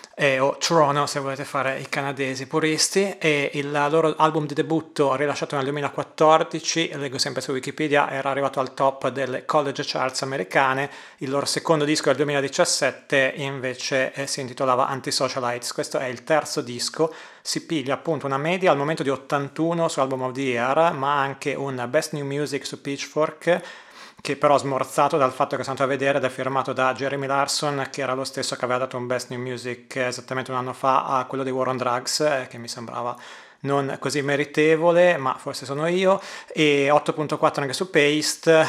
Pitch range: 130-150 Hz